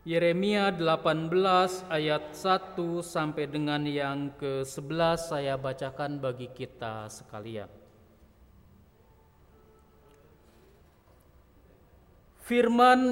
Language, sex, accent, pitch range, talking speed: Indonesian, male, native, 150-220 Hz, 65 wpm